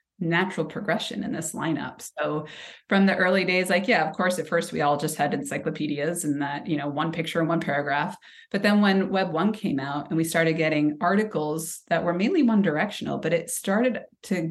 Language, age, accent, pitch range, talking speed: English, 30-49, American, 155-220 Hz, 210 wpm